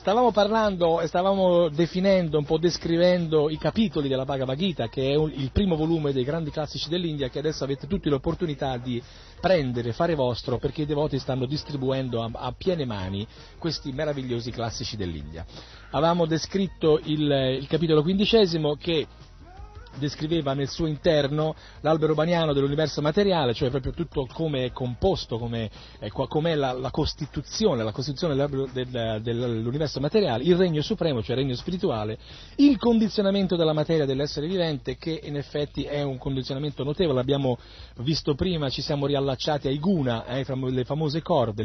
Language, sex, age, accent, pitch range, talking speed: Italian, male, 40-59, native, 125-165 Hz, 155 wpm